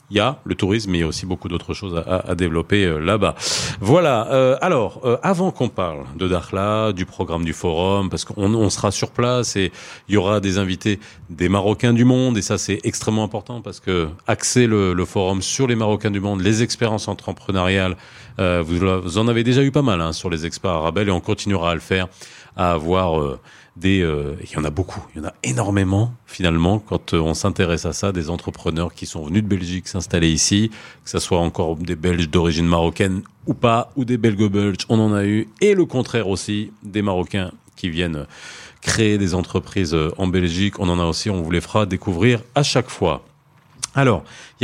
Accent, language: French, French